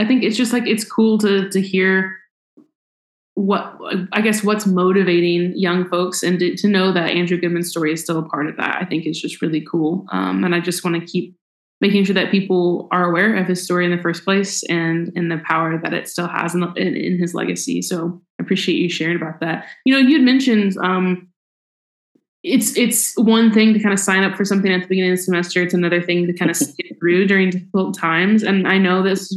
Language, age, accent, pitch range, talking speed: English, 20-39, American, 175-215 Hz, 235 wpm